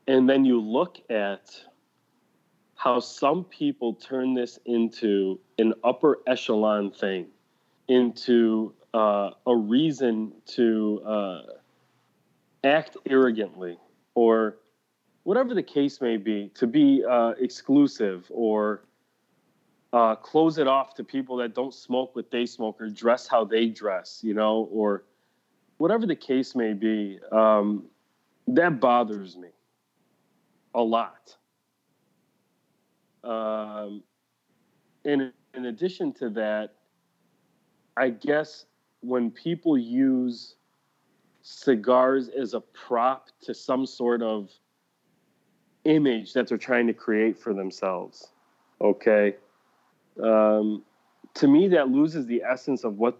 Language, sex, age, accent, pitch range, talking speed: English, male, 30-49, American, 110-130 Hz, 115 wpm